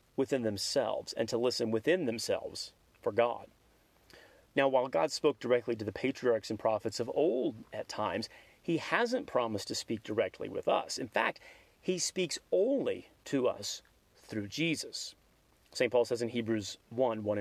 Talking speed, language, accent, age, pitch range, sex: 160 wpm, English, American, 30-49, 115-140 Hz, male